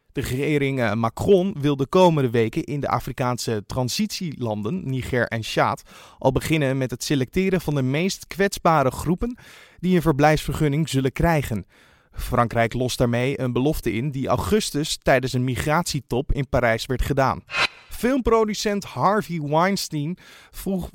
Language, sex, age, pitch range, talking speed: Dutch, male, 30-49, 125-180 Hz, 140 wpm